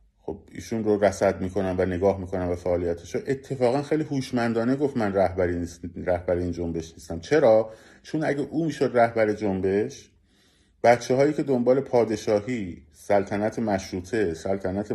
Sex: male